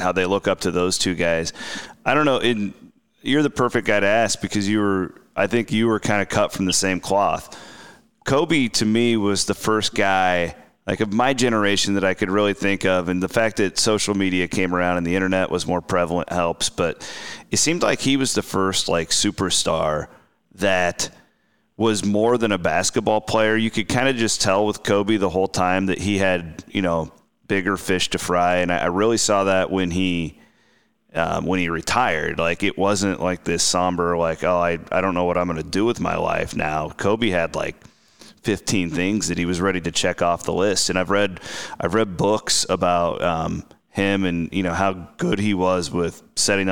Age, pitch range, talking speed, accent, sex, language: 30-49, 90-105 Hz, 210 wpm, American, male, English